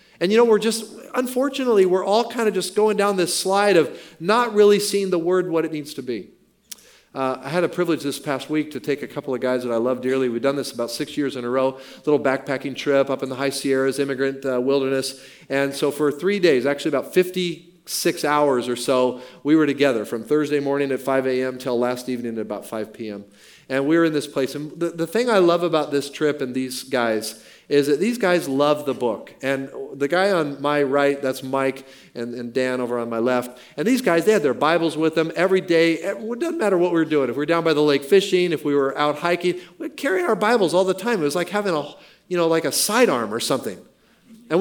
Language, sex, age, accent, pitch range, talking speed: English, male, 40-59, American, 135-185 Hz, 245 wpm